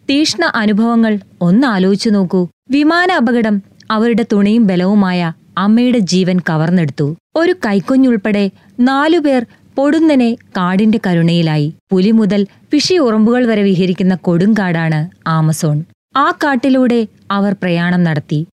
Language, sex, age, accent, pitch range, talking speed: Malayalam, female, 20-39, native, 175-260 Hz, 105 wpm